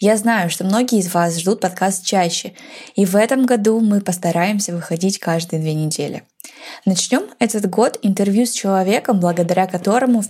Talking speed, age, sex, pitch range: 165 wpm, 20-39, female, 185-235 Hz